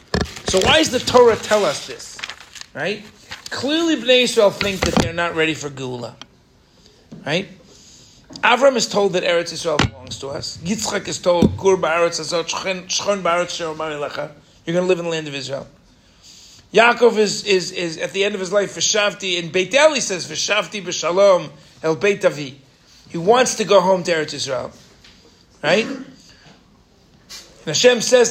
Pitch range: 150-205 Hz